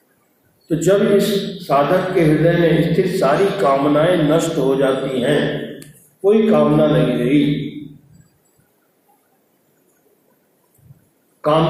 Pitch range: 145-185 Hz